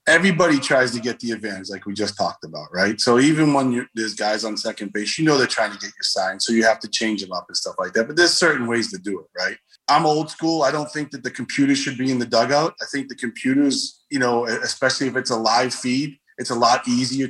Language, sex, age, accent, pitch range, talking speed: English, male, 20-39, American, 115-140 Hz, 265 wpm